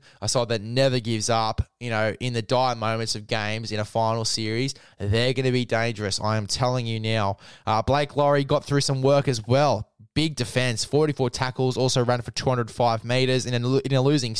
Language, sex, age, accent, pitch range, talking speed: English, male, 10-29, Australian, 115-135 Hz, 210 wpm